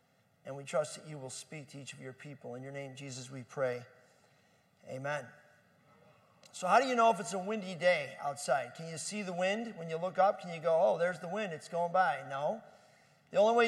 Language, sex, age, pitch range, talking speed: English, male, 40-59, 185-235 Hz, 235 wpm